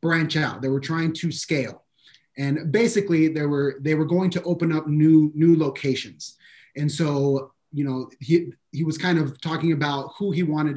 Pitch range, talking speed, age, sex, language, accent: 145-180 Hz, 190 wpm, 30-49, male, English, American